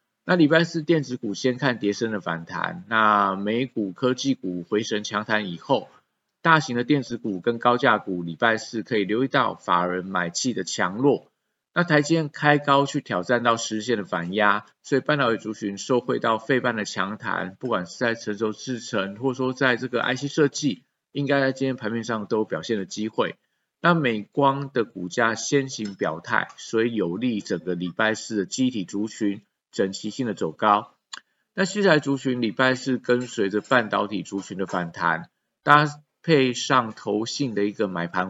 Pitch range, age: 100-130 Hz, 50-69